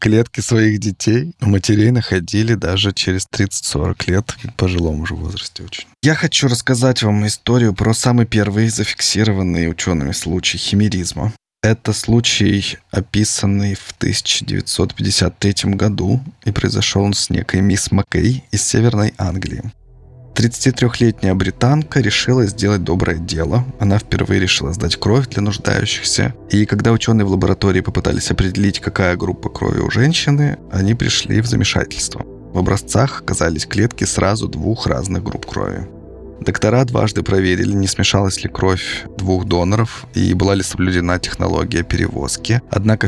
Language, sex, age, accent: Russian, male, 20-39, native